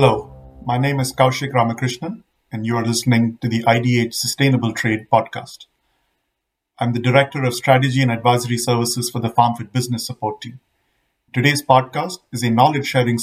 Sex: male